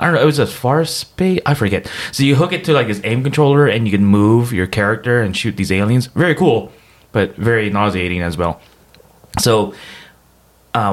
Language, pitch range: English, 100-125 Hz